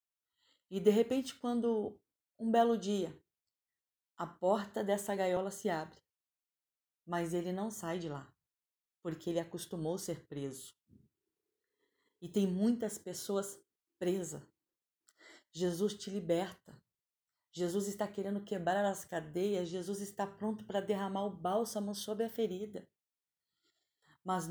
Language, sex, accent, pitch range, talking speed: Portuguese, female, Brazilian, 170-210 Hz, 120 wpm